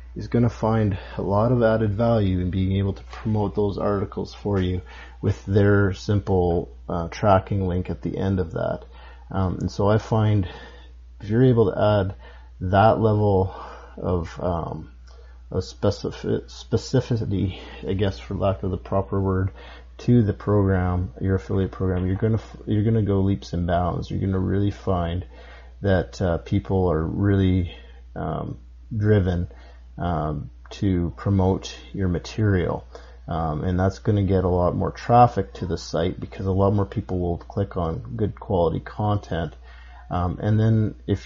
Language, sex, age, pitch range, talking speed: English, male, 40-59, 85-105 Hz, 160 wpm